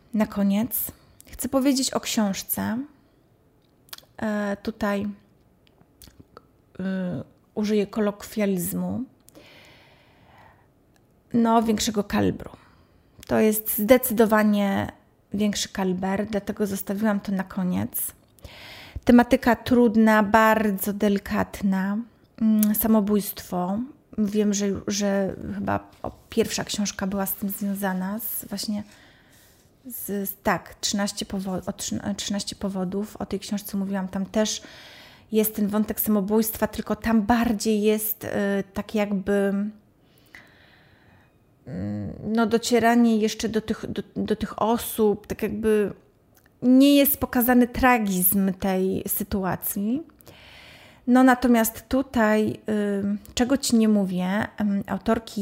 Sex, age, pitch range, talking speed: female, 30-49, 200-225 Hz, 100 wpm